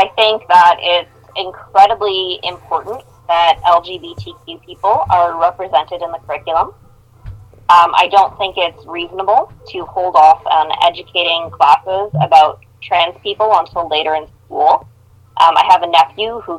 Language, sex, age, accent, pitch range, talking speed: English, female, 20-39, American, 145-195 Hz, 140 wpm